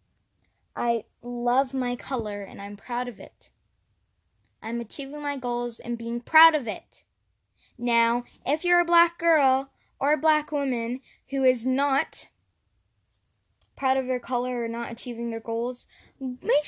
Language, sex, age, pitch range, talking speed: English, female, 10-29, 225-275 Hz, 150 wpm